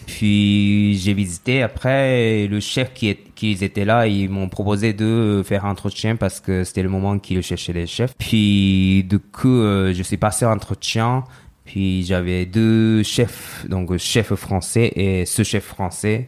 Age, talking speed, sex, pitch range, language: 20-39, 175 wpm, male, 95-115 Hz, French